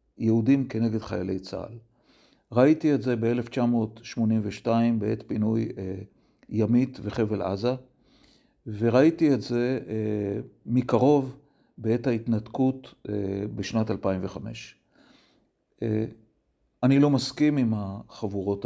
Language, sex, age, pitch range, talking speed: Hebrew, male, 40-59, 105-130 Hz, 95 wpm